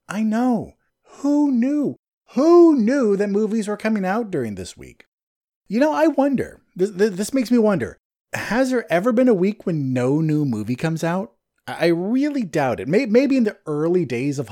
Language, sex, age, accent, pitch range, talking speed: English, male, 30-49, American, 130-205 Hz, 185 wpm